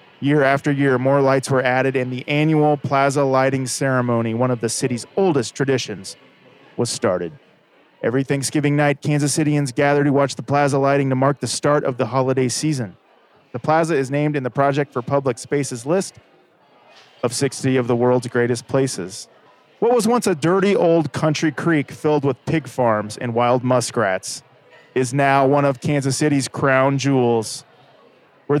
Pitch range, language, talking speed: 125-155 Hz, English, 170 wpm